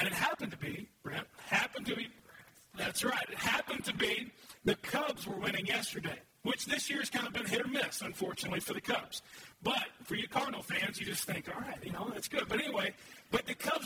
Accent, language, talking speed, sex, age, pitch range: American, English, 230 wpm, male, 40-59, 210-260 Hz